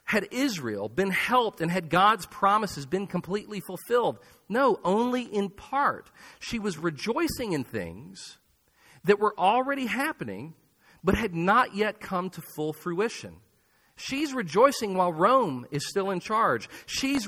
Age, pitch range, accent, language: 40-59, 125-200 Hz, American, English